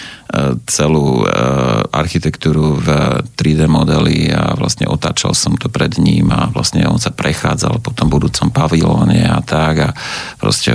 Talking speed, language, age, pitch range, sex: 140 wpm, Slovak, 40-59, 75-90 Hz, male